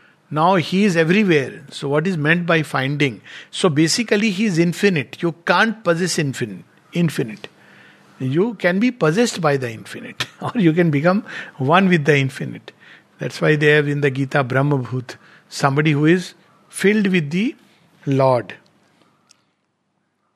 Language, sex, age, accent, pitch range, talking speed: English, male, 50-69, Indian, 150-210 Hz, 150 wpm